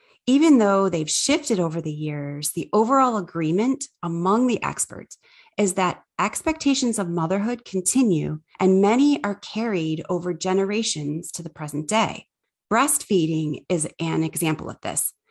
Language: English